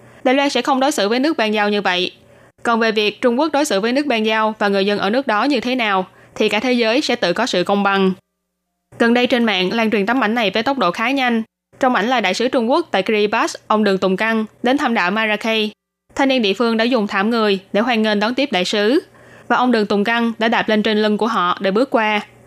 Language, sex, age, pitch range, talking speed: Vietnamese, female, 10-29, 200-245 Hz, 275 wpm